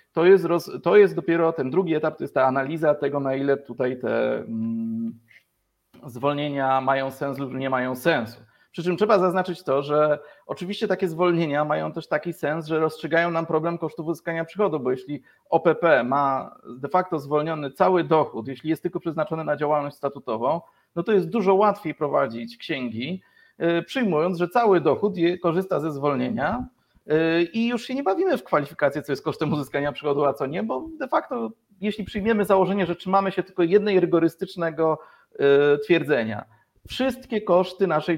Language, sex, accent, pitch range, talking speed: Polish, male, native, 140-185 Hz, 165 wpm